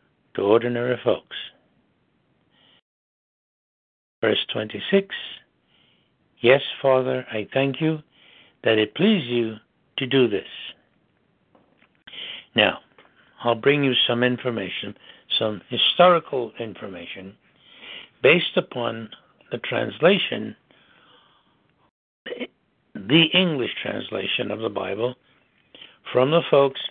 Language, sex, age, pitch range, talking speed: English, male, 60-79, 115-145 Hz, 85 wpm